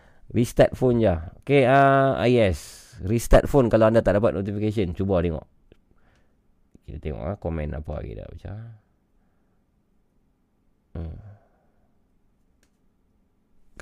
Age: 30-49